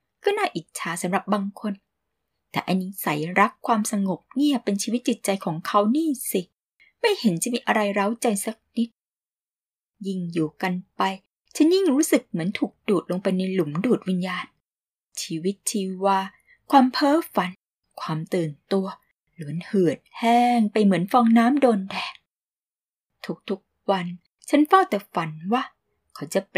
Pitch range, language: 180-235 Hz, Thai